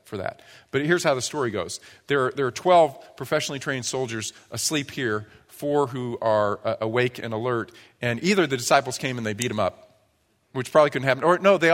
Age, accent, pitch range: 40-59, American, 110-145 Hz